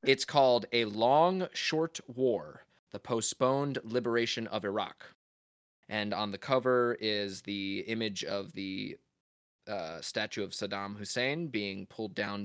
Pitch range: 100-120 Hz